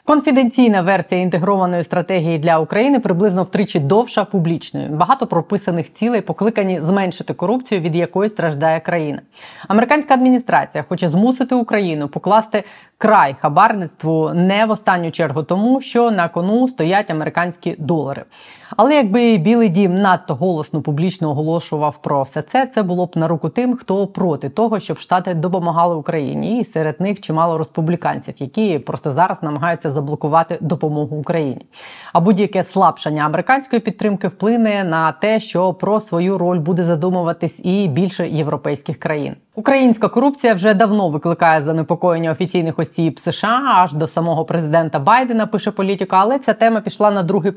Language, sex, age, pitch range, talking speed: Ukrainian, female, 20-39, 165-210 Hz, 145 wpm